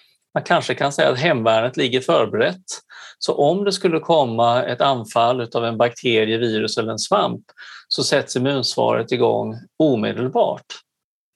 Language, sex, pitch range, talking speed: Swedish, male, 115-170 Hz, 145 wpm